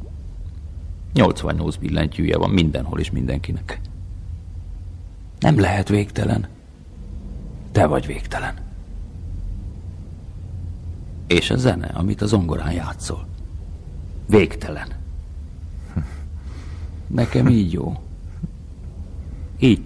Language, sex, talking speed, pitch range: Hungarian, male, 75 wpm, 80-95 Hz